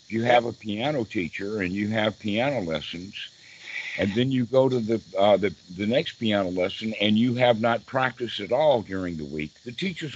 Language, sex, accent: English, male, American